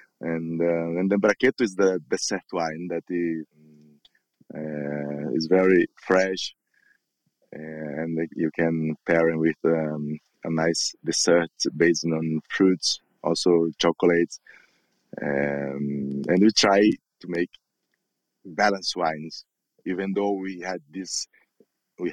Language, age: English, 20-39